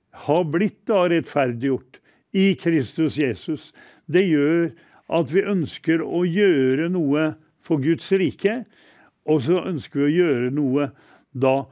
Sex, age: male, 60-79